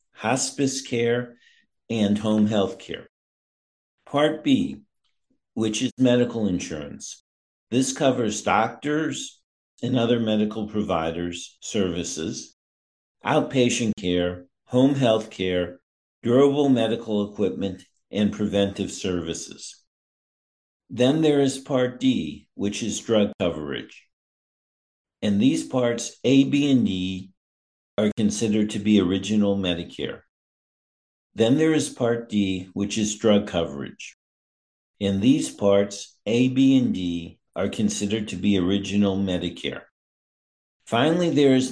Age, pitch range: 50-69, 95-125 Hz